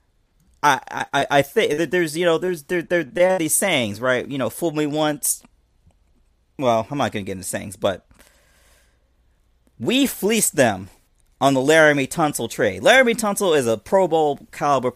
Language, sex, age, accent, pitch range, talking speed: English, male, 40-59, American, 125-175 Hz, 175 wpm